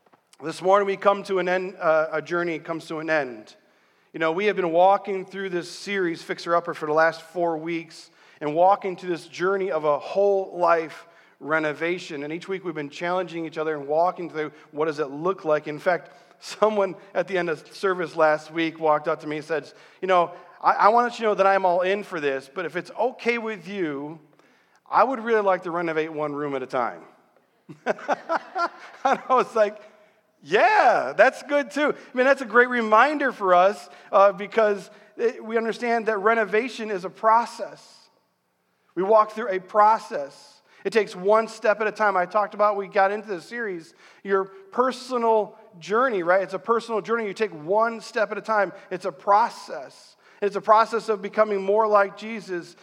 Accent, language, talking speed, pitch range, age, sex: American, English, 200 wpm, 170-215 Hz, 40-59, male